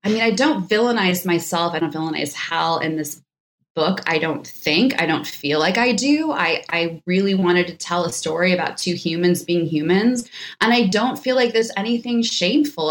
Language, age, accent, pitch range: English, 20-39, American, 165-235 Hz